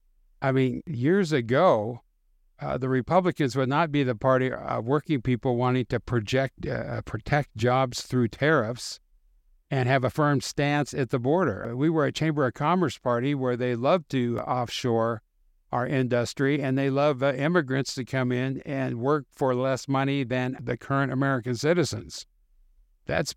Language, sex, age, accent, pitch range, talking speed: English, male, 60-79, American, 120-140 Hz, 165 wpm